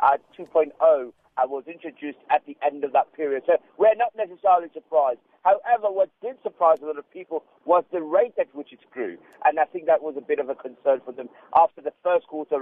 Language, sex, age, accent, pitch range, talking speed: English, male, 50-69, British, 150-190 Hz, 215 wpm